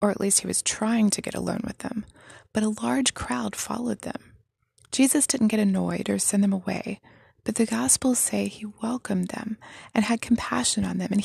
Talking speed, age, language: 205 wpm, 20-39, English